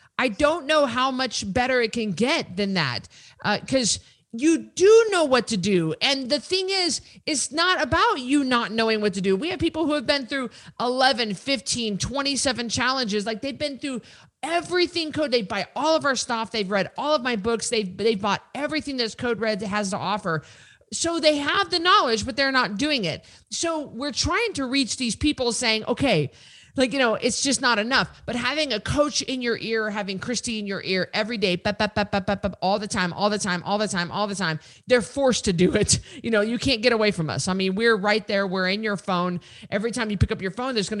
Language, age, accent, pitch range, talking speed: English, 40-59, American, 195-270 Hz, 225 wpm